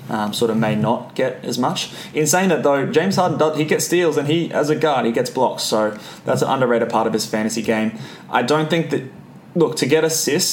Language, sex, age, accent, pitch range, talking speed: English, male, 20-39, Australian, 115-145 Hz, 245 wpm